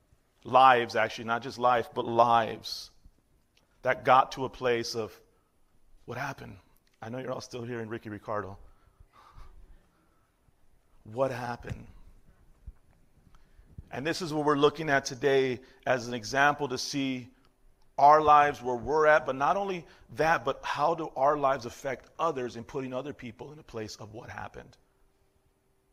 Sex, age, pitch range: male, 40-59, 115-145 Hz